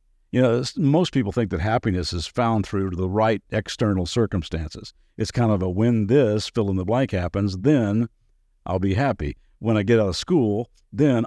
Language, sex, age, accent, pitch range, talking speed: English, male, 50-69, American, 95-125 Hz, 190 wpm